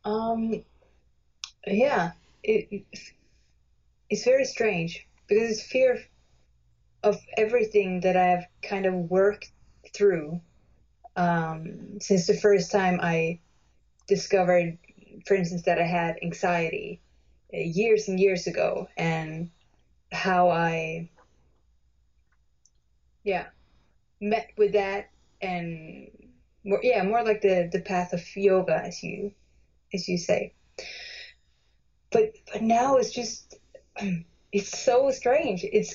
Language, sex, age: English, female, 20-39